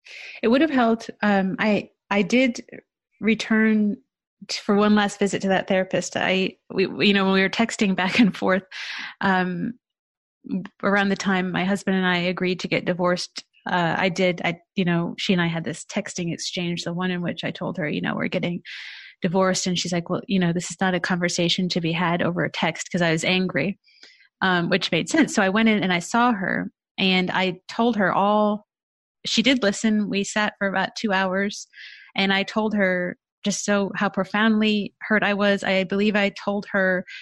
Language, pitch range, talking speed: English, 185-220 Hz, 210 wpm